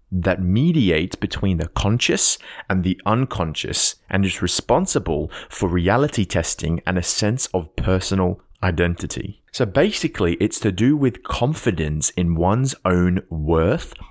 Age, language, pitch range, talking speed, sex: 20-39, English, 85-110 Hz, 130 wpm, male